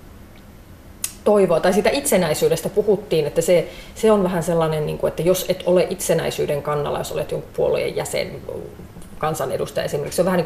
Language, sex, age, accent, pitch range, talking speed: Finnish, female, 30-49, native, 140-185 Hz, 170 wpm